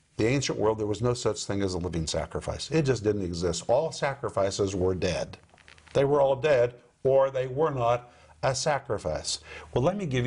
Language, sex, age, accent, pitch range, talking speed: English, male, 50-69, American, 100-125 Hz, 200 wpm